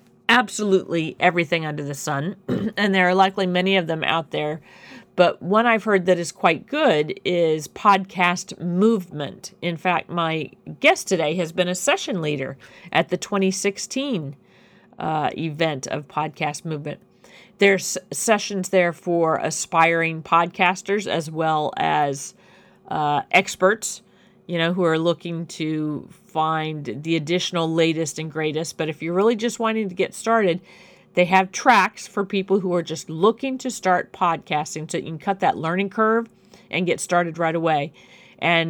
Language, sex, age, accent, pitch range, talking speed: English, female, 40-59, American, 165-200 Hz, 155 wpm